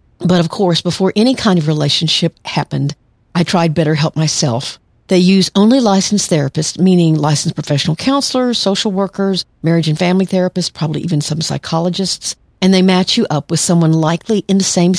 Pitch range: 155-190 Hz